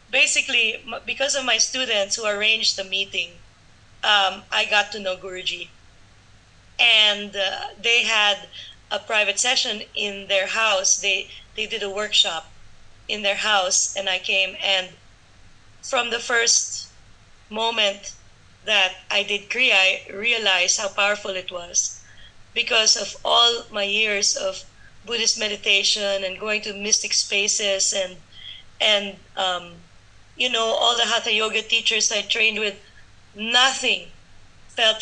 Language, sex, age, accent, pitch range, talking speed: English, female, 20-39, Filipino, 190-225 Hz, 135 wpm